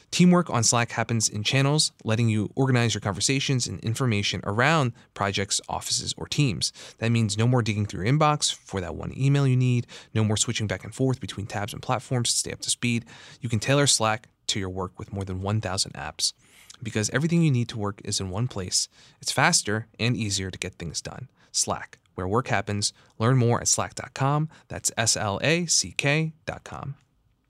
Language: English